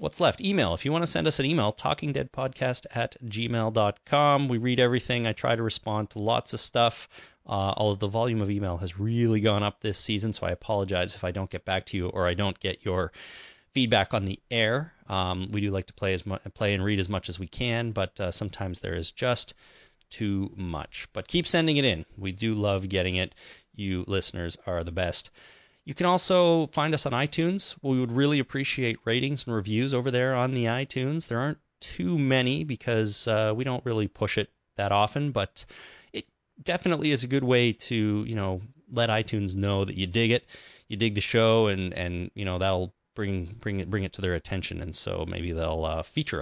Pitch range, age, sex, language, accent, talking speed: 95-125 Hz, 30-49, male, English, American, 215 wpm